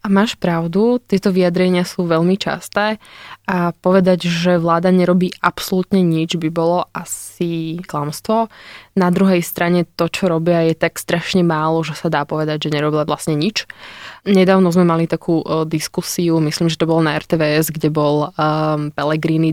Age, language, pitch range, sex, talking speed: 20-39, Slovak, 160-180 Hz, female, 155 wpm